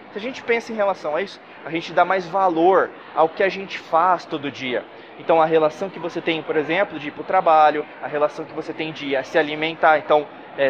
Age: 20-39